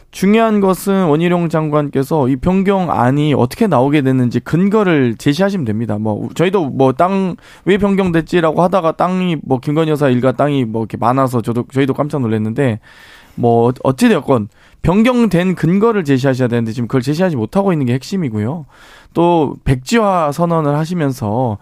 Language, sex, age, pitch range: Korean, male, 20-39, 130-180 Hz